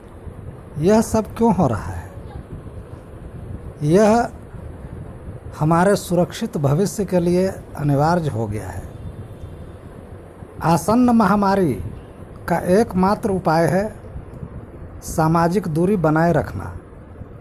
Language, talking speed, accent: Hindi, 90 wpm, native